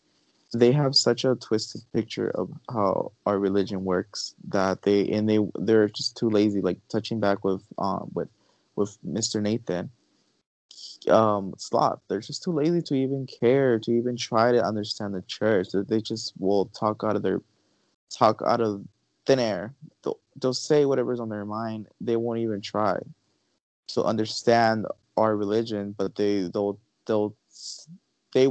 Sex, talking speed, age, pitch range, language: male, 160 wpm, 20-39, 105-130 Hz, English